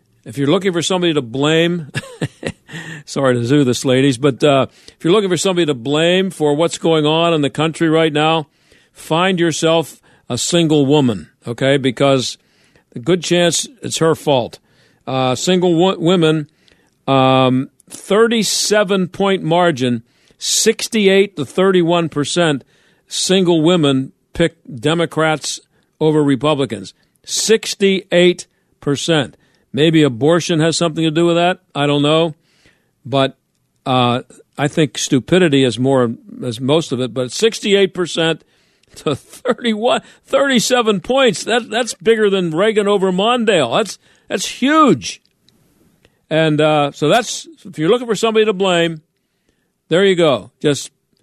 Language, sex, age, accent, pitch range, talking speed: English, male, 50-69, American, 140-185 Hz, 130 wpm